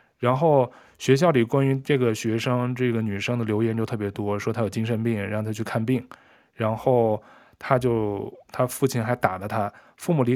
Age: 20-39